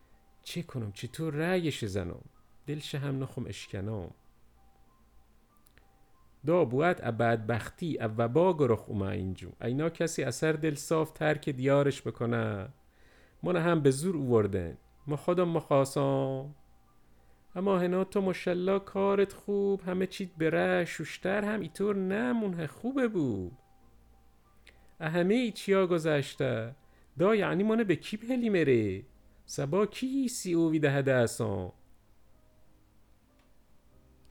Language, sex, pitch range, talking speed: Persian, male, 115-175 Hz, 105 wpm